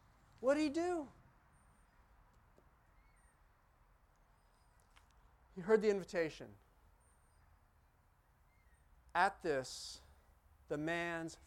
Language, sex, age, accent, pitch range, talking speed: English, male, 40-59, American, 150-245 Hz, 65 wpm